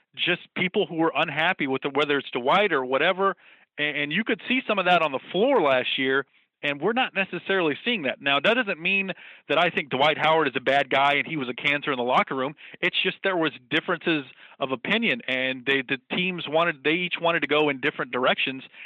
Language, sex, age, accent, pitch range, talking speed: English, male, 40-59, American, 140-190 Hz, 230 wpm